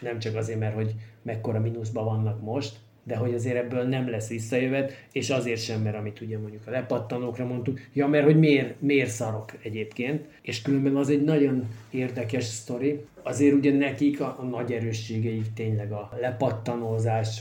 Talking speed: 170 wpm